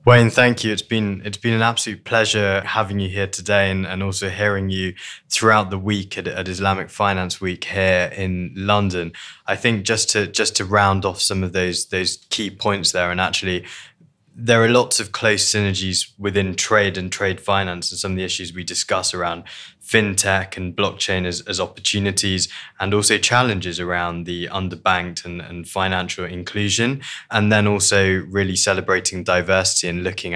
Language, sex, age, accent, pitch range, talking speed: English, male, 20-39, British, 90-105 Hz, 180 wpm